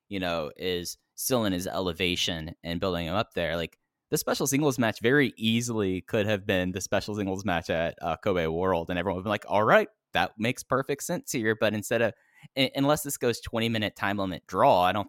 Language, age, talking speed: English, 10-29, 220 wpm